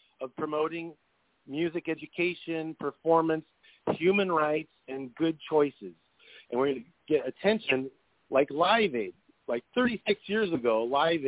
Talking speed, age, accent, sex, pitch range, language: 130 wpm, 50-69, American, male, 140-180 Hz, English